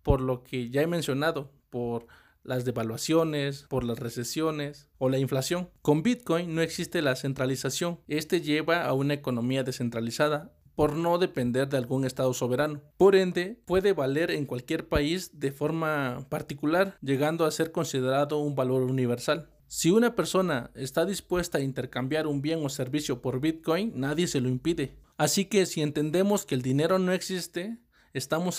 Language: Spanish